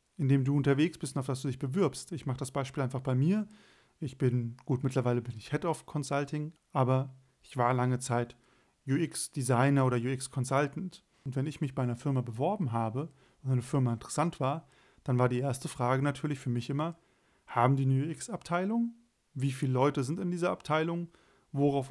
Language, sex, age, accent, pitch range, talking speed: German, male, 30-49, German, 130-155 Hz, 190 wpm